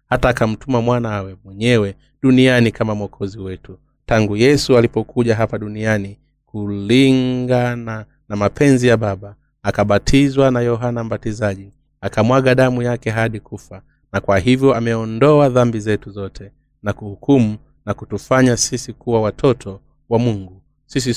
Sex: male